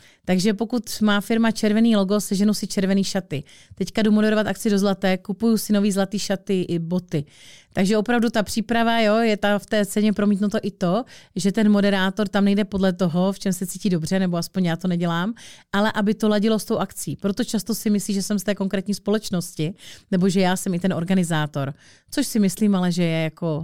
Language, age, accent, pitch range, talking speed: Czech, 30-49, native, 180-210 Hz, 215 wpm